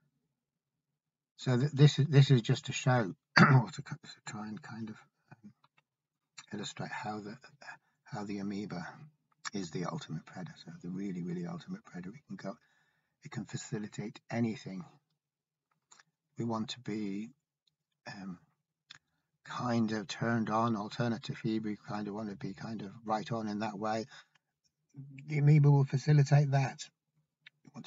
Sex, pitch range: male, 115-150 Hz